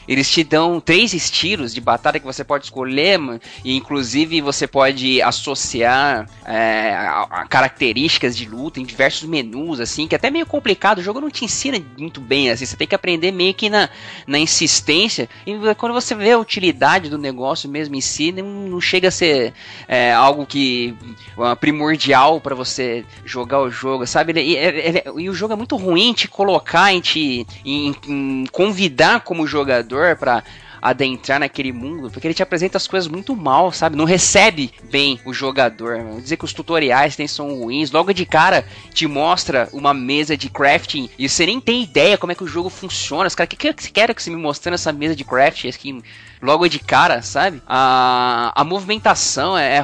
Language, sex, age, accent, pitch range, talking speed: Portuguese, male, 20-39, Brazilian, 130-180 Hz, 195 wpm